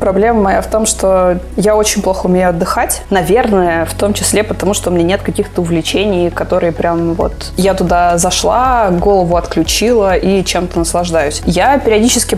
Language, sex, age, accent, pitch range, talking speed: Russian, female, 20-39, native, 175-205 Hz, 165 wpm